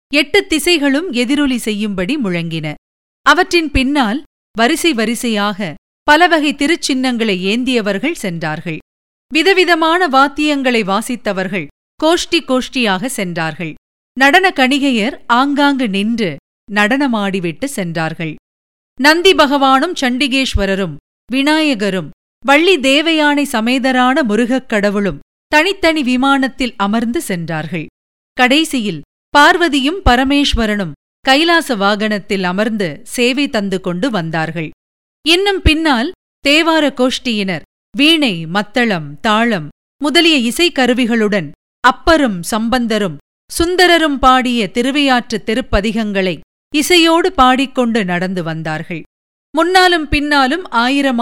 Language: Tamil